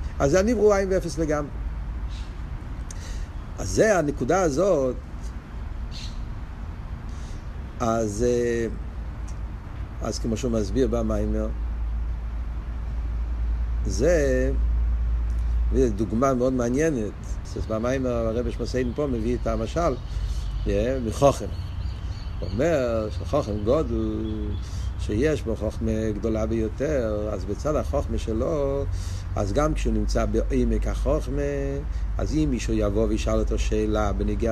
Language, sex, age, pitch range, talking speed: Hebrew, male, 60-79, 85-120 Hz, 95 wpm